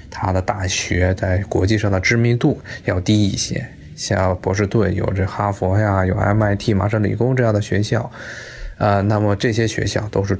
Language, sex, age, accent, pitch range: Chinese, male, 20-39, native, 100-120 Hz